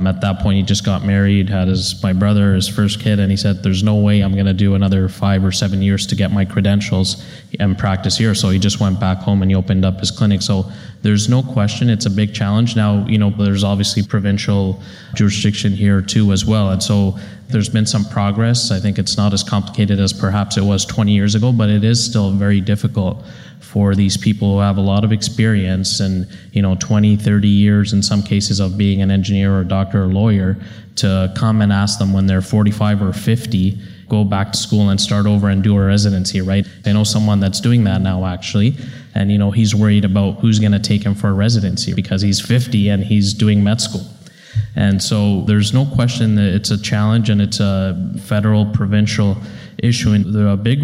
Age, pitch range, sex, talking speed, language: 20-39, 100-105 Hz, male, 220 wpm, English